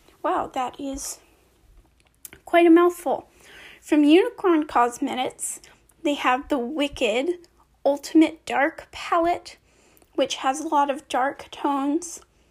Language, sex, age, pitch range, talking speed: English, female, 10-29, 280-340 Hz, 110 wpm